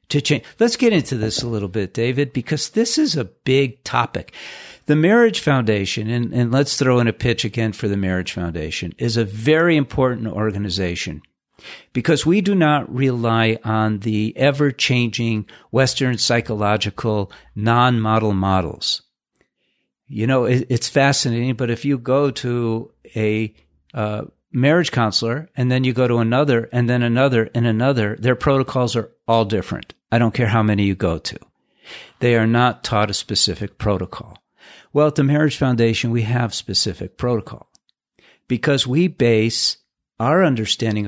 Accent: American